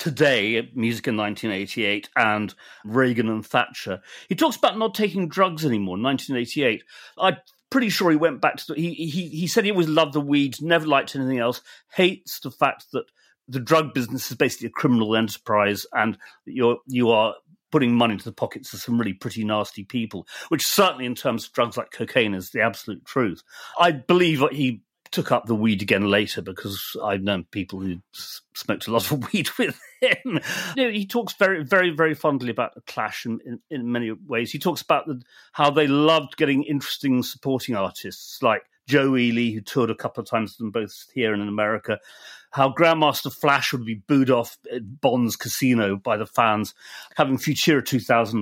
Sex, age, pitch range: male, 40-59, 115-165 Hz